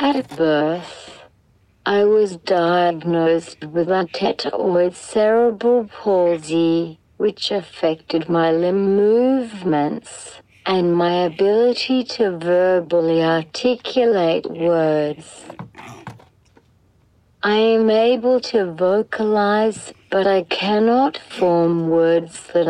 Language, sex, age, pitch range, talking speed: English, female, 60-79, 160-200 Hz, 85 wpm